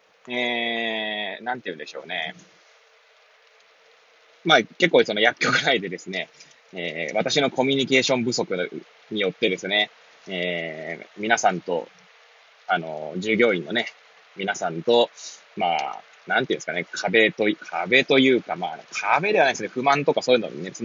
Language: Japanese